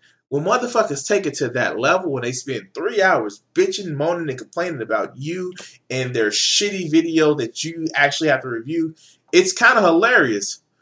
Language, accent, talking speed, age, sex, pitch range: English, American, 175 wpm, 20-39, male, 125-185 Hz